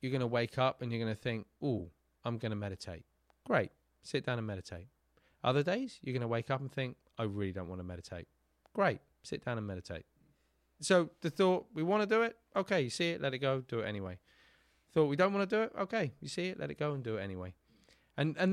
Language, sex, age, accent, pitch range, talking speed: English, male, 30-49, British, 95-140 Hz, 230 wpm